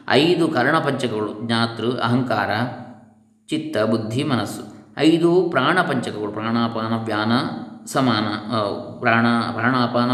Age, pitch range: 20-39, 110-125 Hz